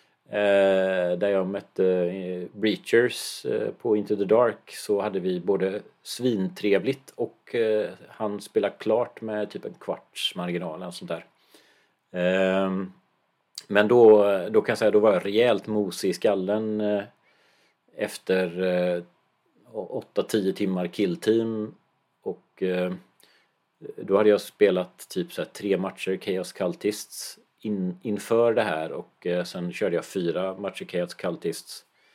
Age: 40-59